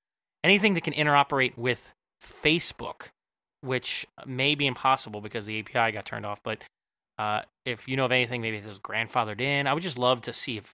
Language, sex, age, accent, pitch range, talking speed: English, male, 20-39, American, 115-145 Hz, 195 wpm